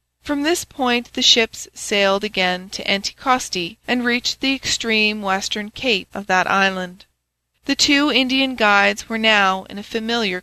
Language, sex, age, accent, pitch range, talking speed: English, female, 30-49, American, 190-235 Hz, 155 wpm